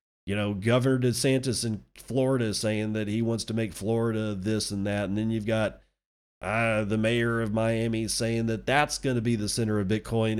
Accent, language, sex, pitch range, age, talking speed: American, English, male, 95-120 Hz, 40-59, 210 wpm